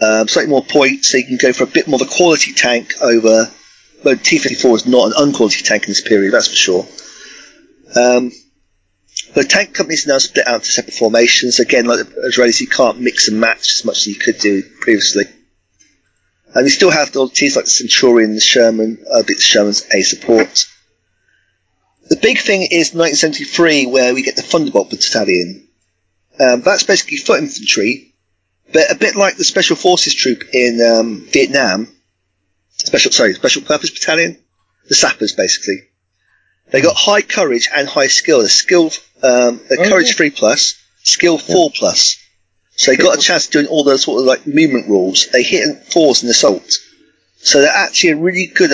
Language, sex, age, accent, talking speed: English, male, 30-49, British, 190 wpm